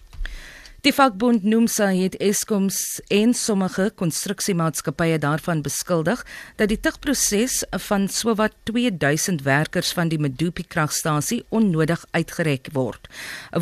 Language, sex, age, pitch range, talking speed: English, female, 50-69, 160-210 Hz, 110 wpm